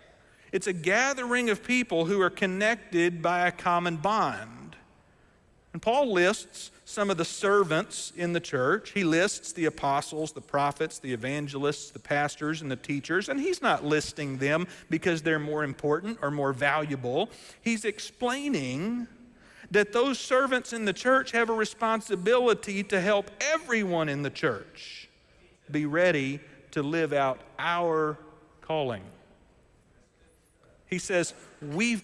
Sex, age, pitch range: male, 50-69, 150-210 Hz